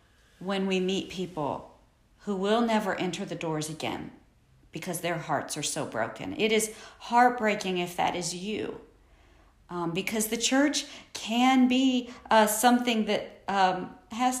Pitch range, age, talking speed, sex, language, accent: 180-225 Hz, 40-59, 145 wpm, female, English, American